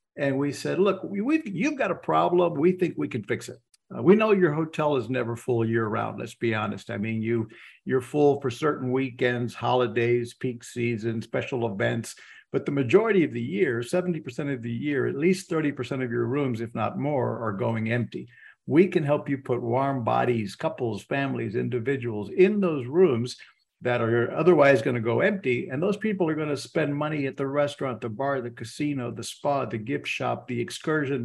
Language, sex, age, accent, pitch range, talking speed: English, male, 60-79, American, 120-155 Hz, 205 wpm